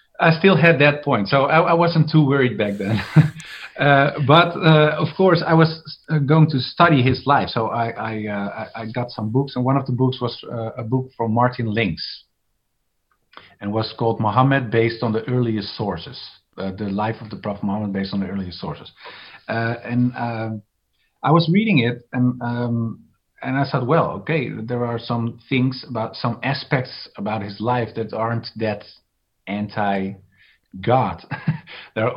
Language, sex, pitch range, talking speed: English, male, 105-135 Hz, 180 wpm